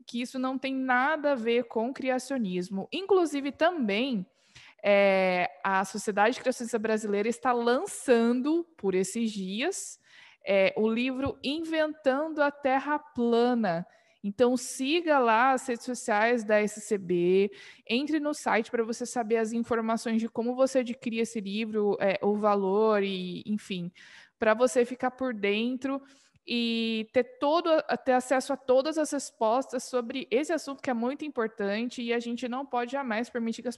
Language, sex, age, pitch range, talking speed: Portuguese, female, 20-39, 210-255 Hz, 150 wpm